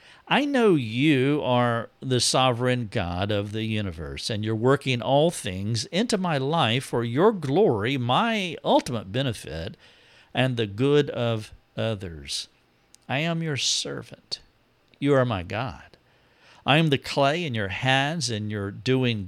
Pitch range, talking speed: 115-150 Hz, 145 wpm